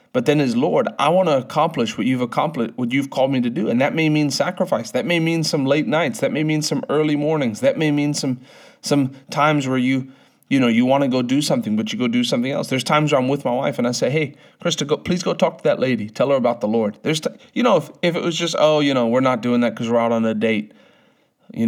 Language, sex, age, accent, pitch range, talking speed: English, male, 30-49, American, 130-190 Hz, 285 wpm